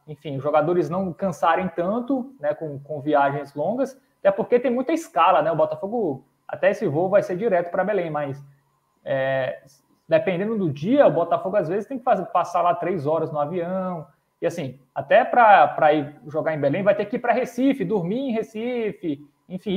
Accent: Brazilian